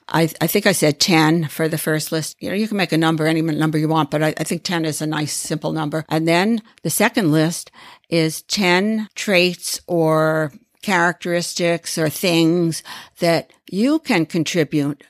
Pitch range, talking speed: 160-185 Hz, 180 wpm